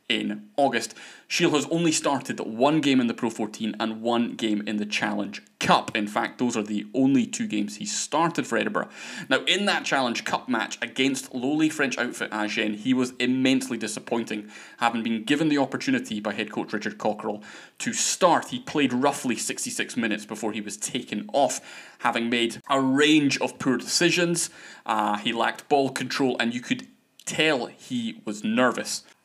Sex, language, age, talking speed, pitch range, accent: male, English, 20-39, 180 wpm, 115-160 Hz, British